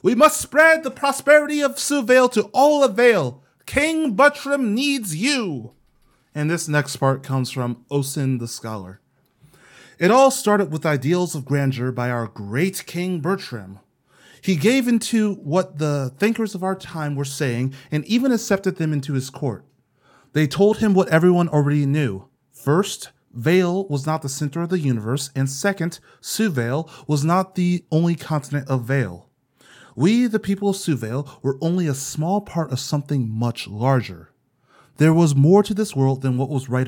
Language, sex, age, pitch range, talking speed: English, male, 30-49, 130-185 Hz, 170 wpm